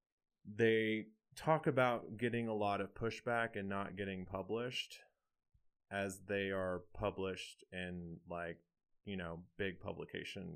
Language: English